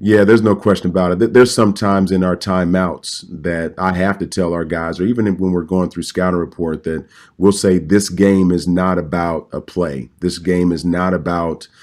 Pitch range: 85-95 Hz